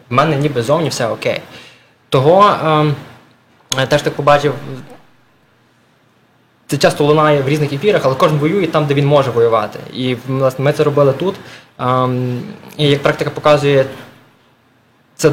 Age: 20-39